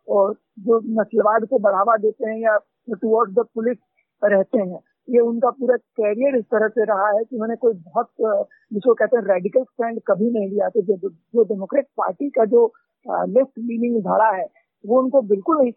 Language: Hindi